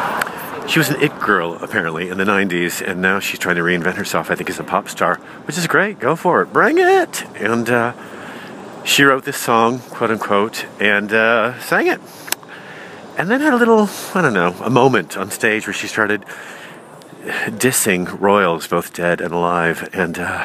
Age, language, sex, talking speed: 40-59, English, male, 185 wpm